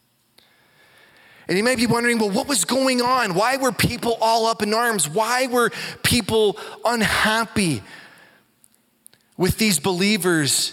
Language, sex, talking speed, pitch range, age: English, male, 135 wpm, 170-240 Hz, 20-39